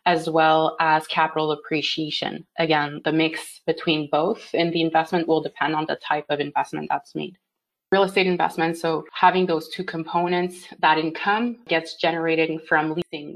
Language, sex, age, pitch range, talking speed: English, female, 20-39, 155-170 Hz, 160 wpm